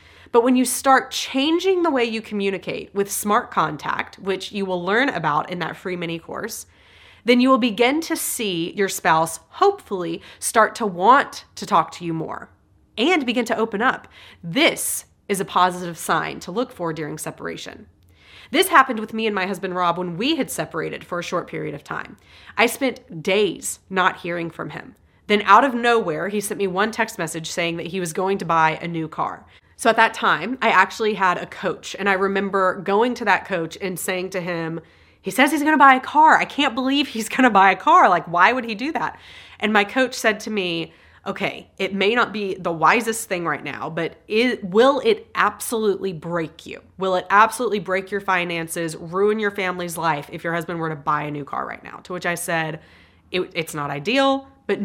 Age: 30-49